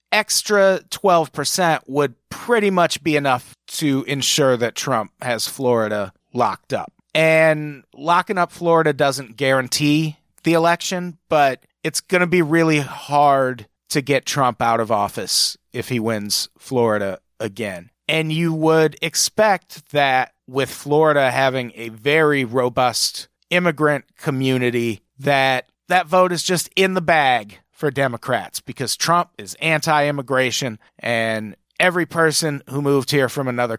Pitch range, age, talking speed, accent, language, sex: 125-165 Hz, 30-49, 135 wpm, American, English, male